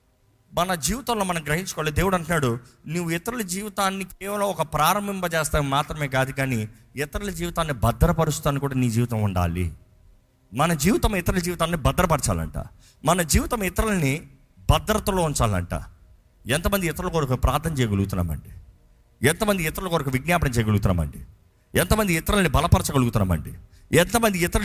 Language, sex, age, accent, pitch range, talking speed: Telugu, male, 50-69, native, 110-170 Hz, 115 wpm